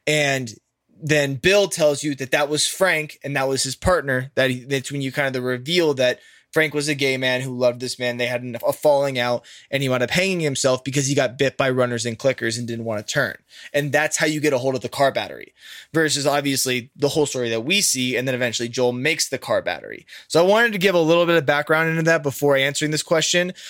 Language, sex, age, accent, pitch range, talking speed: English, male, 20-39, American, 130-160 Hz, 255 wpm